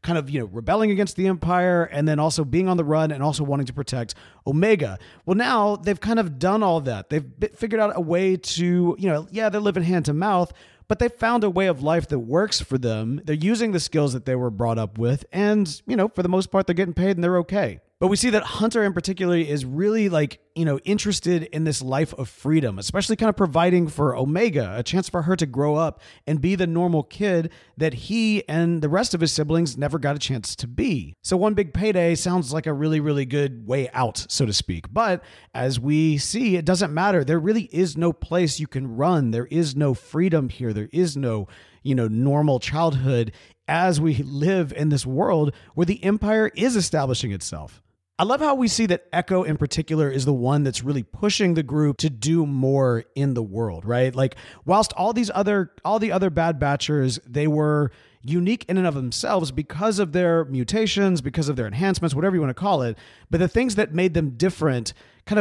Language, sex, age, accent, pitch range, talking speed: English, male, 30-49, American, 140-190 Hz, 225 wpm